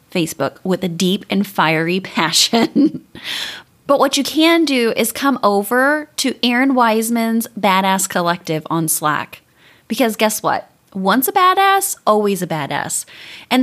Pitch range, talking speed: 180-250 Hz, 140 wpm